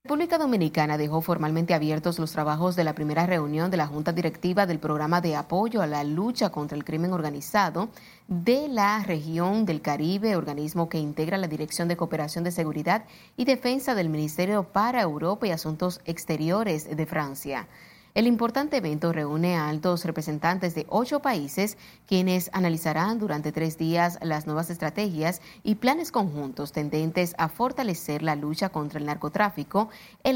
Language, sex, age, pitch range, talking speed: Spanish, female, 30-49, 155-200 Hz, 160 wpm